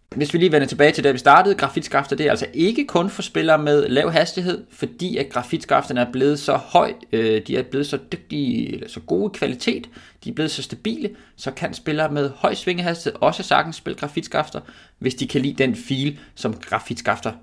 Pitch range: 120-195 Hz